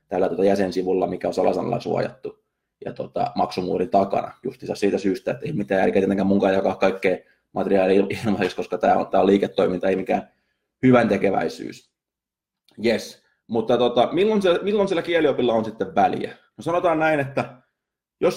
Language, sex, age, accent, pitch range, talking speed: Finnish, male, 20-39, native, 100-130 Hz, 155 wpm